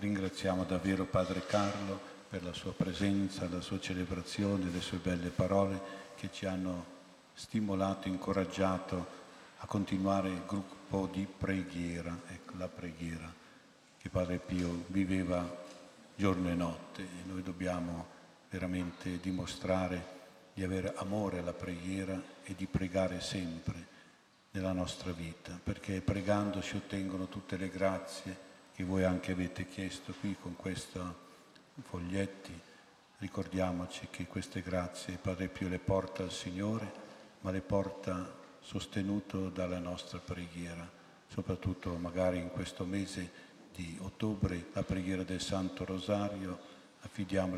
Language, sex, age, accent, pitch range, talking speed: Italian, male, 50-69, native, 90-95 Hz, 125 wpm